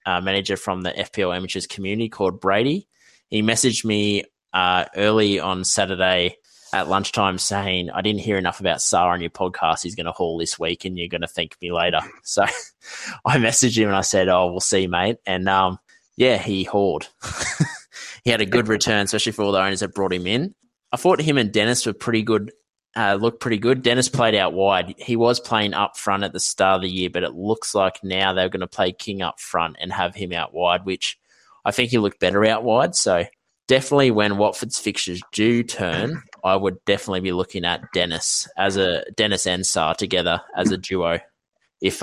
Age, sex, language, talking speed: 20-39, male, English, 210 wpm